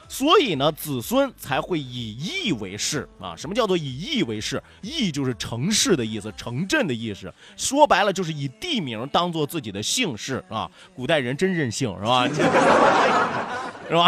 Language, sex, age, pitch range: Chinese, male, 30-49, 145-225 Hz